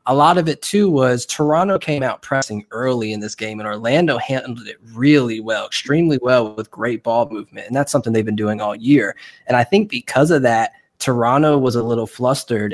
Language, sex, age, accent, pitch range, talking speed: English, male, 20-39, American, 115-140 Hz, 210 wpm